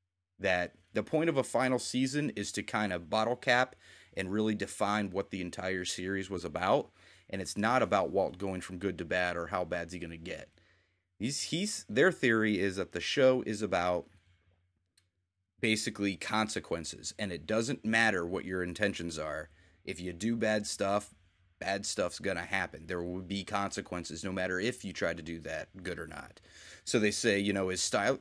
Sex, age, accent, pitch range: male, 30-49, American, 90-130 Hz